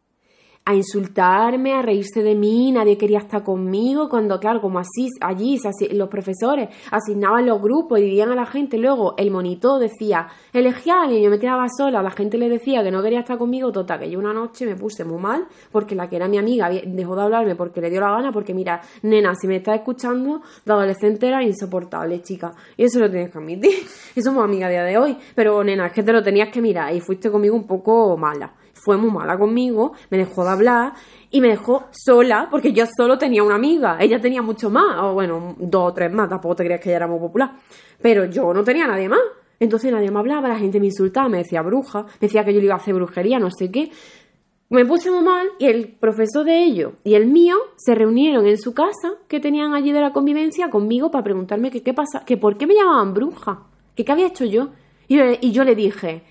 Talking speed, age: 230 wpm, 20-39